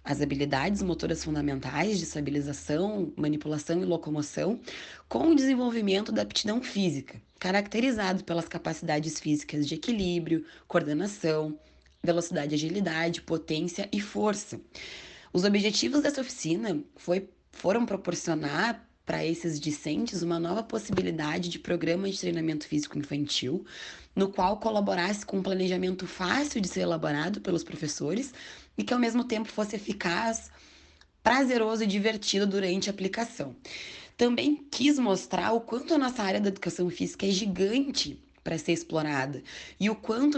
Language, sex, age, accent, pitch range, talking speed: Portuguese, female, 20-39, Brazilian, 165-225 Hz, 130 wpm